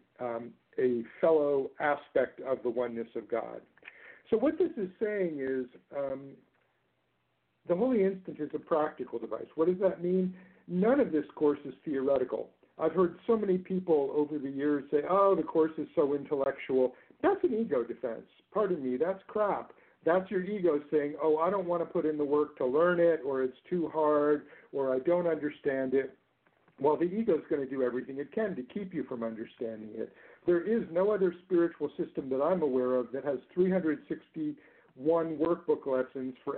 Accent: American